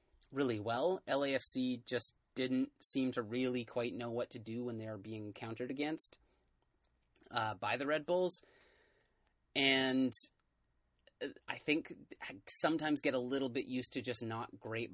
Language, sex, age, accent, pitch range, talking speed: English, male, 30-49, American, 110-135 Hz, 145 wpm